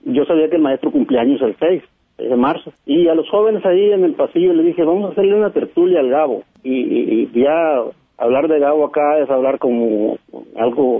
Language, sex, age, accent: Spanish, male, 40-59, Mexican